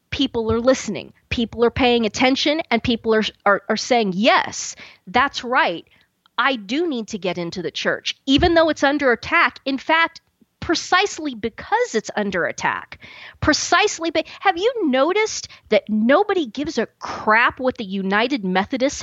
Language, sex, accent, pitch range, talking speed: English, female, American, 225-315 Hz, 160 wpm